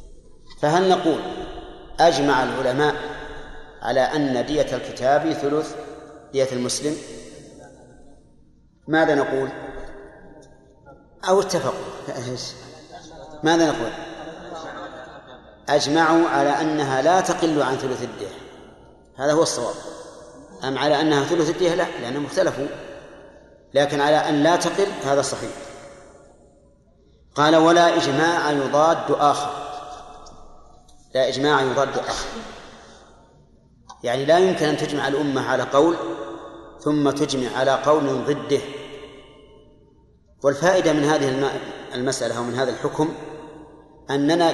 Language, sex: Arabic, male